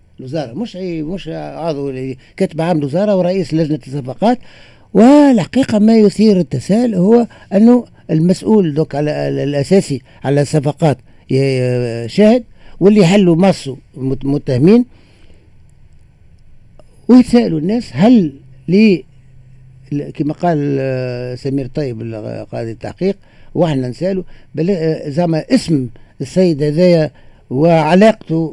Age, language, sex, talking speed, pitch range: 60-79, Arabic, male, 95 wpm, 130-180 Hz